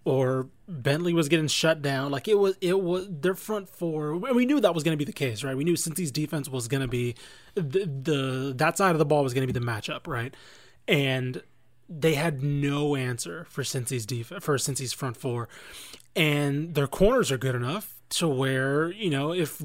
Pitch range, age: 145-190 Hz, 20-39